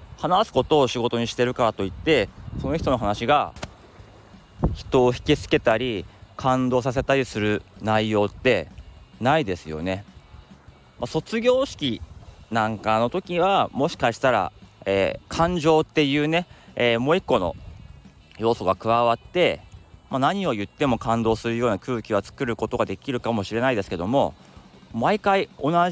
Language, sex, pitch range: Japanese, male, 100-135 Hz